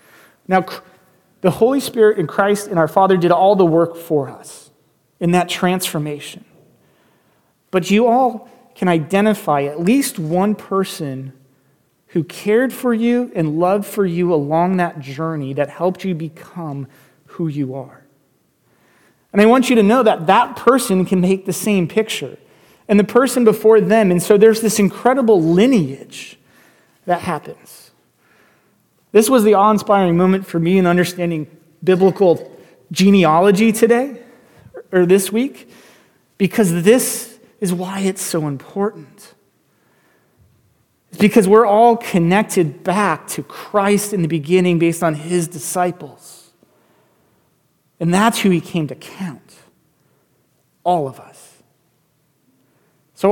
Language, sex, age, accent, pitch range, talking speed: English, male, 30-49, American, 165-210 Hz, 135 wpm